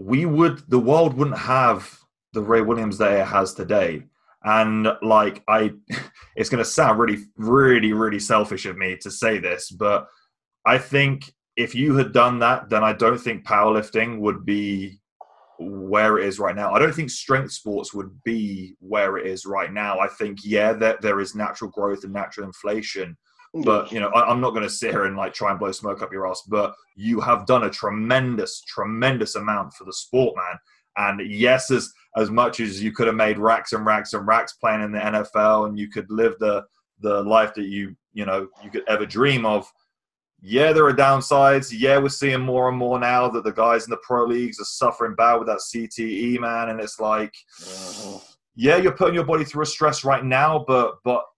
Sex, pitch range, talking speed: male, 105-125 Hz, 210 wpm